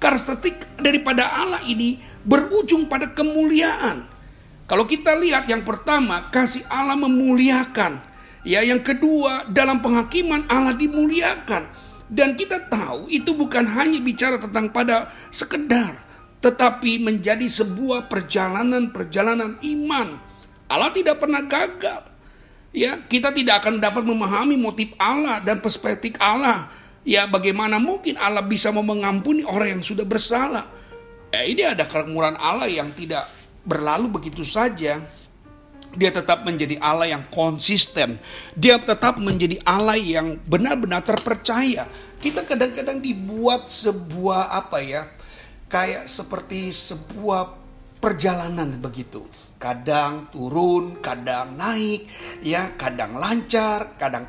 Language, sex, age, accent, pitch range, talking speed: Indonesian, male, 50-69, native, 195-270 Hz, 115 wpm